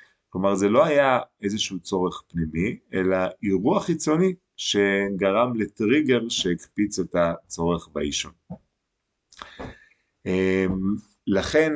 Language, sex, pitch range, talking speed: Hebrew, male, 90-120 Hz, 85 wpm